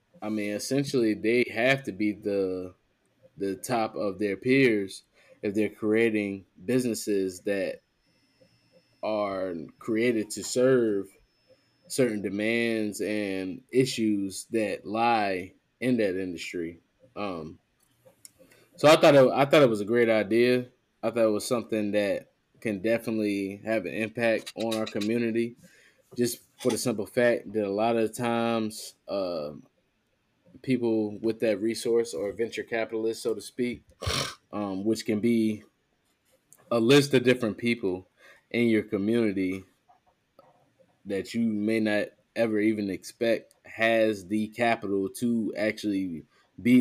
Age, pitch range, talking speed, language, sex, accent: 20-39, 105-120 Hz, 130 wpm, English, male, American